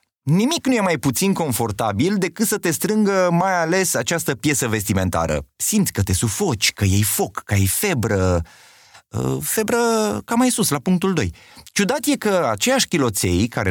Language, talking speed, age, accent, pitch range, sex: Romanian, 165 wpm, 30-49, native, 105-170 Hz, male